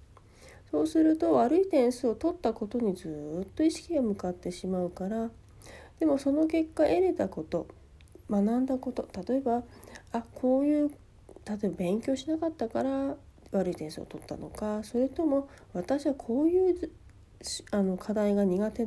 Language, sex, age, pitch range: Japanese, female, 40-59, 190-290 Hz